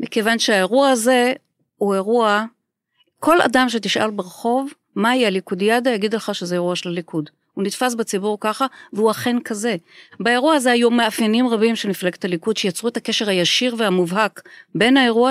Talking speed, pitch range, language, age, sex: 155 wpm, 185-245 Hz, Hebrew, 40-59, female